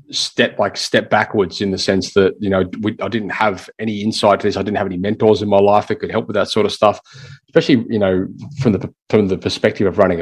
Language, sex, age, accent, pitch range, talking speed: English, male, 30-49, Australian, 95-110 Hz, 250 wpm